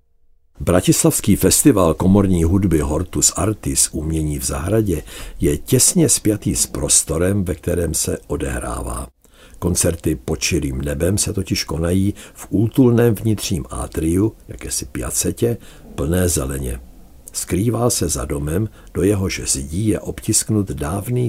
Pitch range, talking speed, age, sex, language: 75-100 Hz, 120 wpm, 60-79, male, Czech